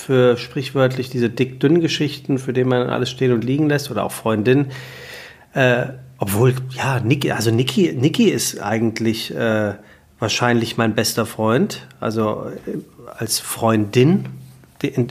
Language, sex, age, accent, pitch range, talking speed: German, male, 40-59, German, 115-140 Hz, 135 wpm